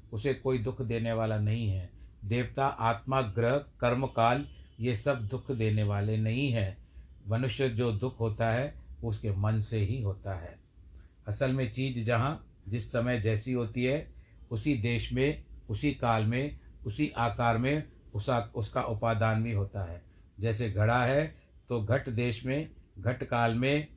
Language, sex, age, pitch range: Hindi, male, 60-79, 110-135 Hz